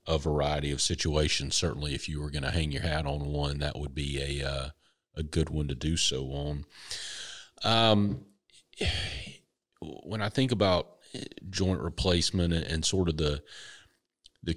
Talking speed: 165 wpm